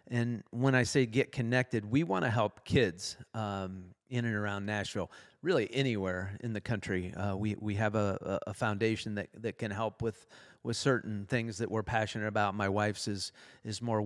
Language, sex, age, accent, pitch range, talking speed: English, male, 40-59, American, 105-125 Hz, 190 wpm